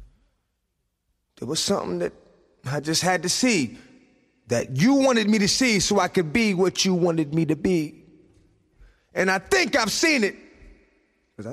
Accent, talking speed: American, 165 wpm